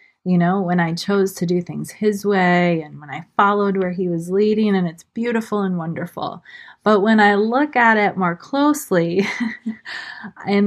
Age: 20-39